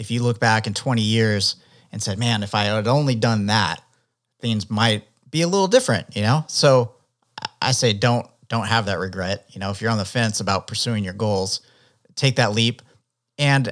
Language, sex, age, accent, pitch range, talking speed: English, male, 30-49, American, 105-130 Hz, 205 wpm